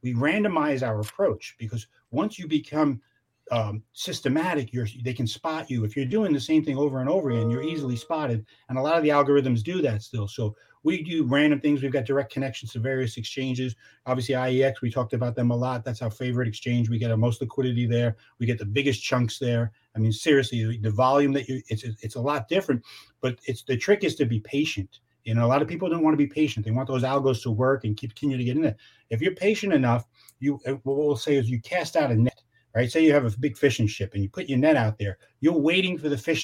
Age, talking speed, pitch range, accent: 40-59, 250 wpm, 115-150 Hz, American